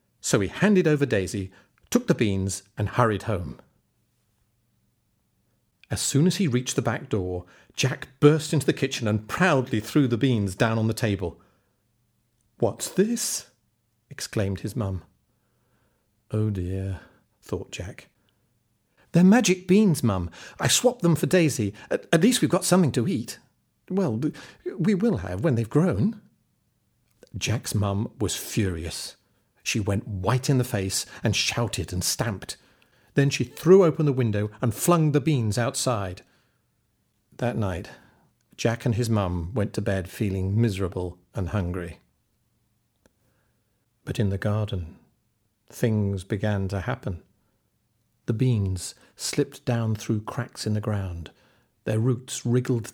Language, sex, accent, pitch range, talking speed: English, male, British, 105-135 Hz, 140 wpm